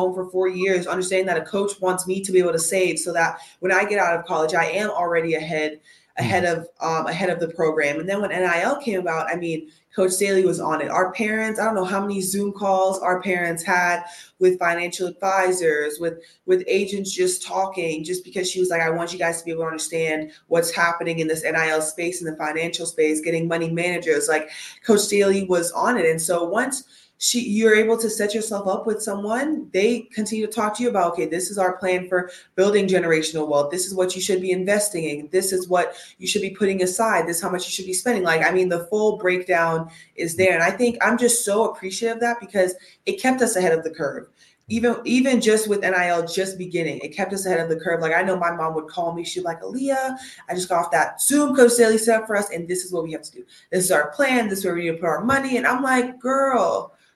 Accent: American